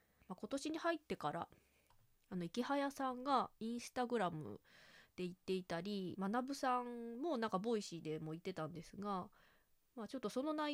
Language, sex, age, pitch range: Japanese, female, 20-39, 185-260 Hz